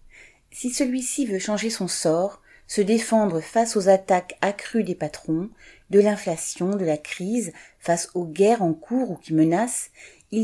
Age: 30-49